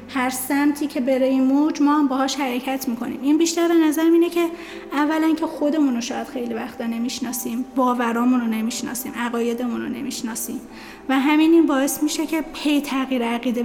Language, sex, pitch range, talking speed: Persian, female, 250-300 Hz, 170 wpm